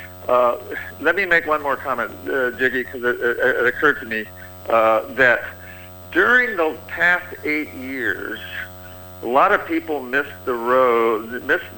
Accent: American